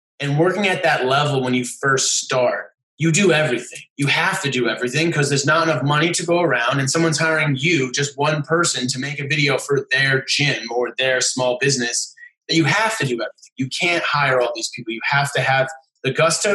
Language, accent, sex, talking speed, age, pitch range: English, American, male, 220 wpm, 20-39, 135-165 Hz